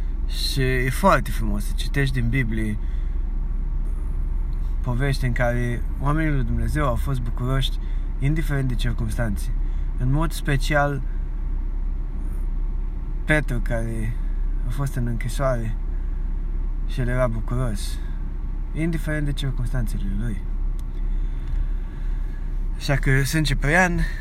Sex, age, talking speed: male, 20-39, 100 wpm